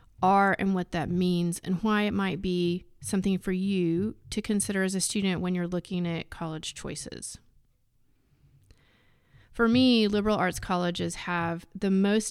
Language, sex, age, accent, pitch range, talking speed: English, female, 30-49, American, 170-200 Hz, 155 wpm